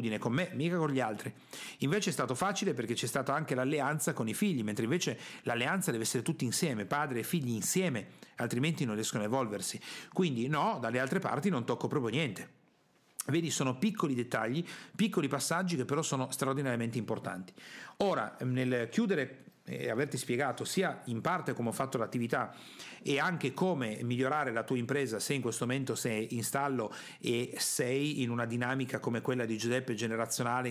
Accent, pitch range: native, 120-150 Hz